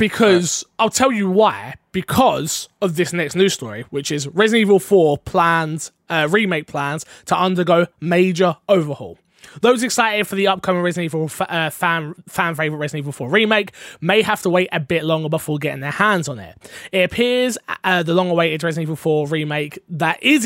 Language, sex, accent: English, male, British